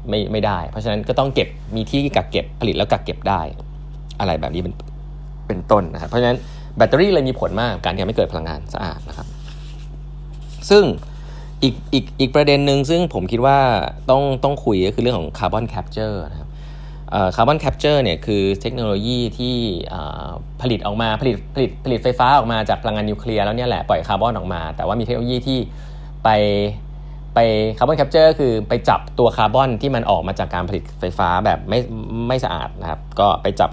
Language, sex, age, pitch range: Thai, male, 20-39, 100-145 Hz